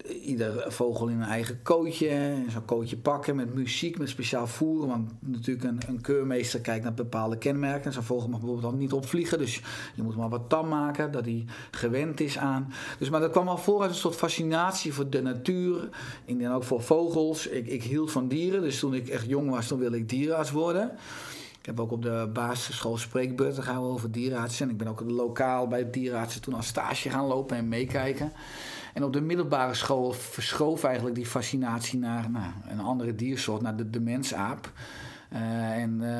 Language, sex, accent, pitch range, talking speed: Dutch, male, Dutch, 120-145 Hz, 195 wpm